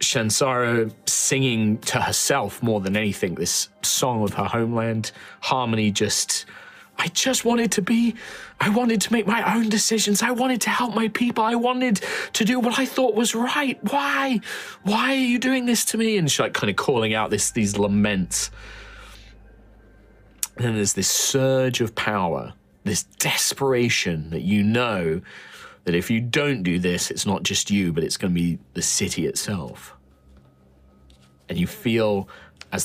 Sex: male